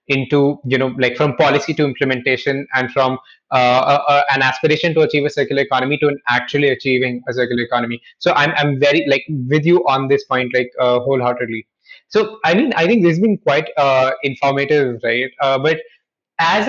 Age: 20-39